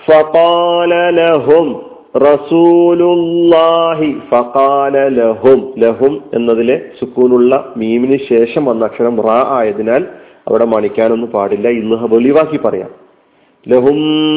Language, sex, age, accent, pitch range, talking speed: Malayalam, male, 40-59, native, 125-160 Hz, 115 wpm